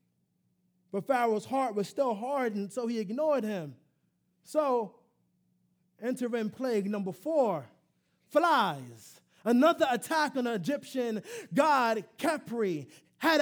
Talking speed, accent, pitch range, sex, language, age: 105 wpm, American, 205-310 Hz, male, English, 20-39